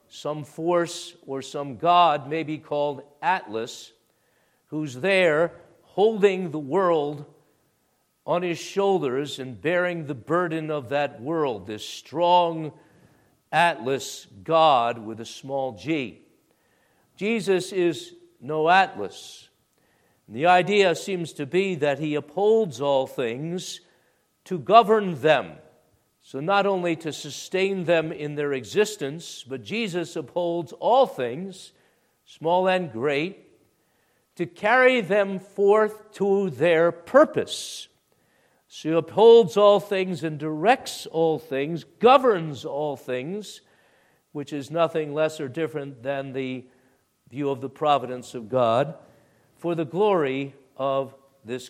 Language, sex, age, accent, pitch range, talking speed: English, male, 50-69, American, 140-185 Hz, 120 wpm